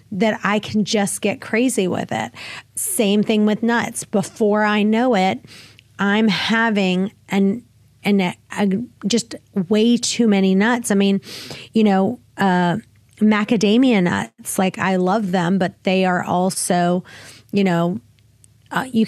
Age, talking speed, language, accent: 30-49, 140 wpm, English, American